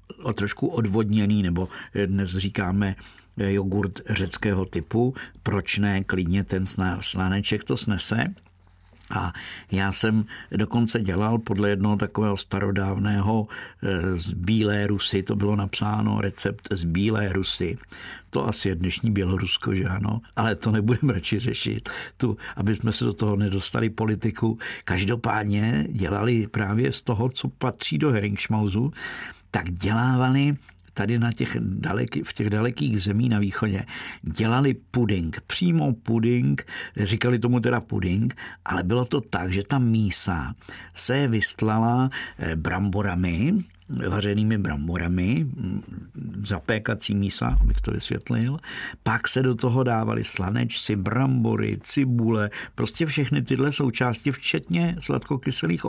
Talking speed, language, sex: 125 wpm, Czech, male